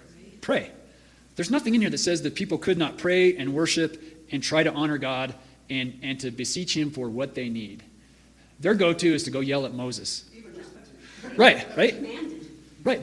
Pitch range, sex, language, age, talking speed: 135-175 Hz, male, English, 40-59, 180 wpm